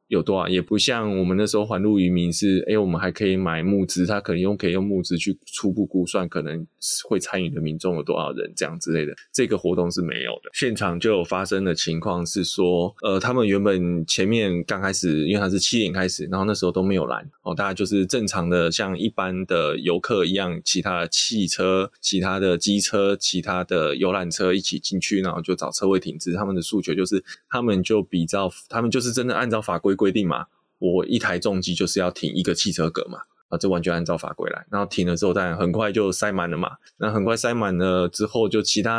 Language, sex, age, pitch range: Chinese, male, 20-39, 90-105 Hz